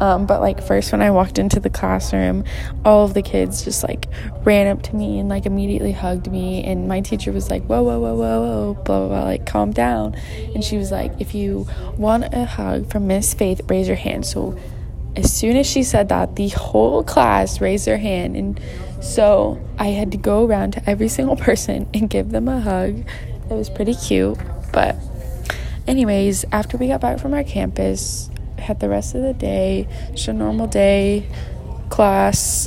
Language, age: English, 20-39